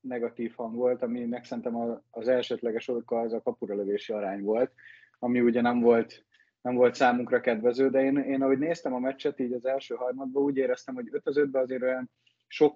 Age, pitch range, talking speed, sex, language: 20-39, 115-130 Hz, 195 wpm, male, Hungarian